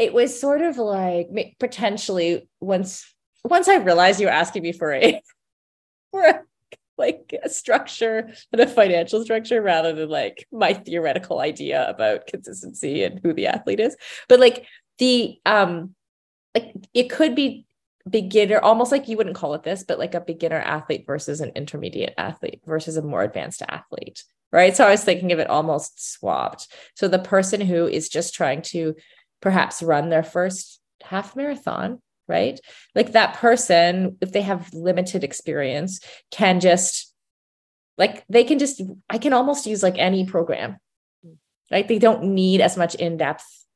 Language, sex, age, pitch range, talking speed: English, female, 20-39, 170-225 Hz, 165 wpm